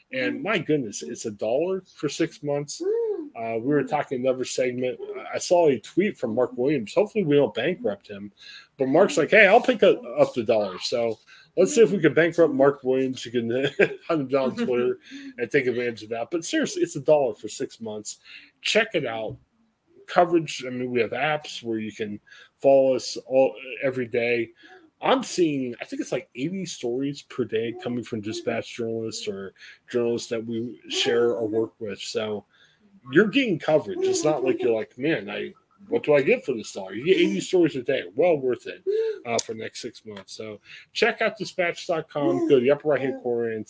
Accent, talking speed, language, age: American, 205 wpm, English, 20-39